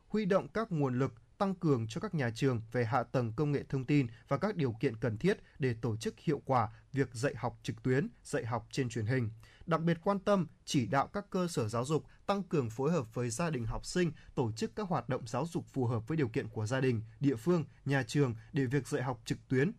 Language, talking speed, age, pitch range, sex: Vietnamese, 255 wpm, 20-39, 130-170 Hz, male